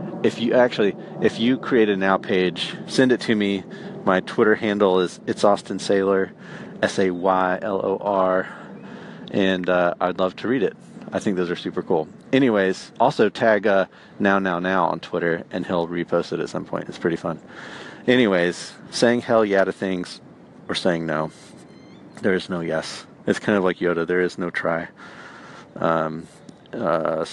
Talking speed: 180 wpm